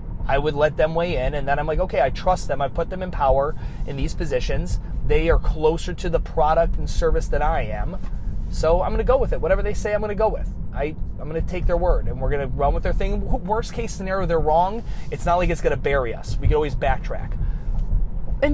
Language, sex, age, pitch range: English, male, 30-49, 135-180 Hz